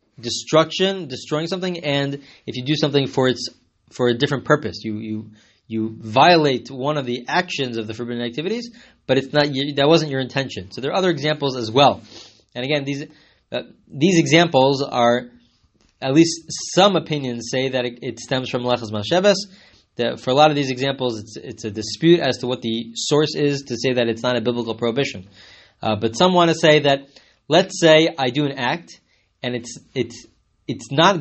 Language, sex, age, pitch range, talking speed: English, male, 20-39, 120-150 Hz, 195 wpm